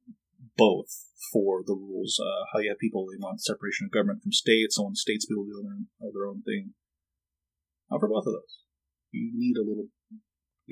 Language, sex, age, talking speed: English, male, 30-49, 200 wpm